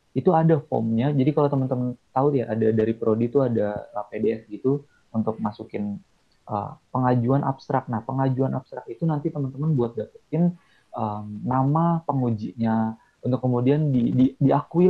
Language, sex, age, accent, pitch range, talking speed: Indonesian, male, 30-49, native, 115-155 Hz, 145 wpm